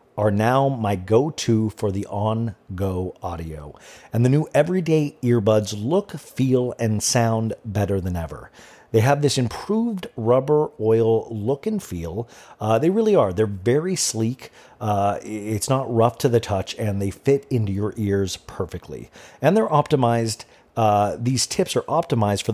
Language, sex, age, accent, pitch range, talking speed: English, male, 40-59, American, 100-130 Hz, 155 wpm